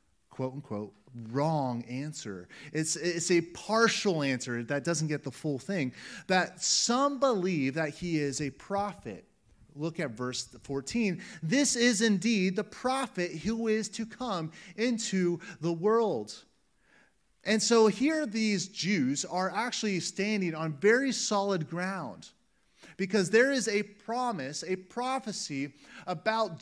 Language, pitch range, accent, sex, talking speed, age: English, 145-210 Hz, American, male, 130 wpm, 30-49